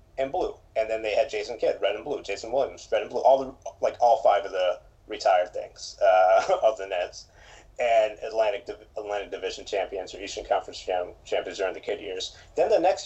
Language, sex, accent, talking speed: English, male, American, 205 wpm